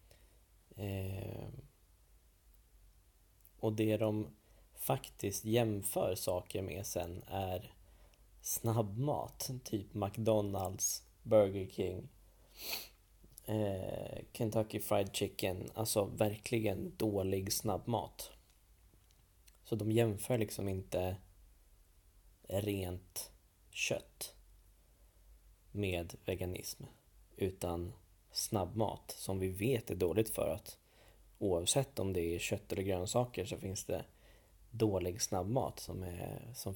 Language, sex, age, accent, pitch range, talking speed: Swedish, male, 20-39, native, 95-115 Hz, 85 wpm